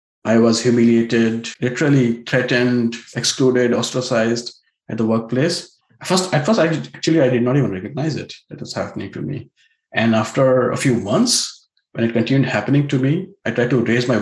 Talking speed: 175 wpm